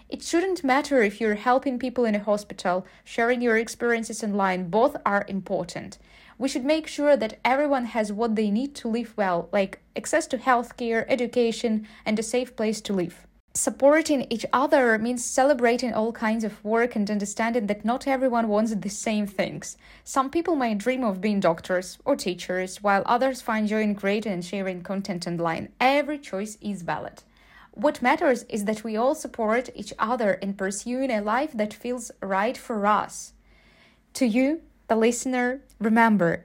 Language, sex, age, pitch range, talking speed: Ukrainian, female, 20-39, 200-250 Hz, 175 wpm